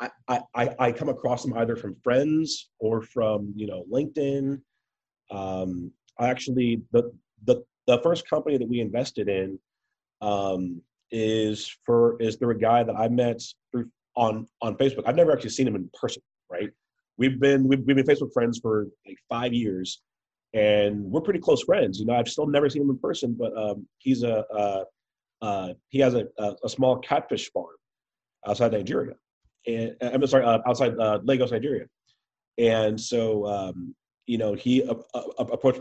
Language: English